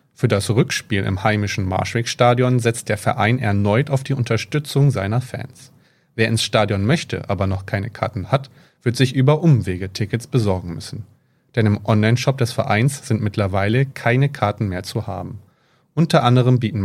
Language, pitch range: German, 105-130 Hz